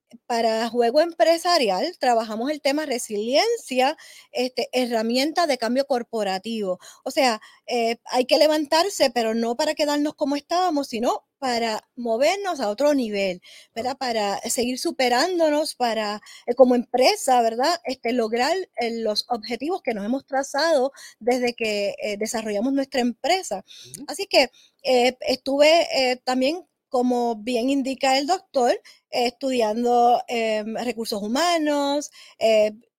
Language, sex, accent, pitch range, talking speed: Spanish, female, American, 230-285 Hz, 130 wpm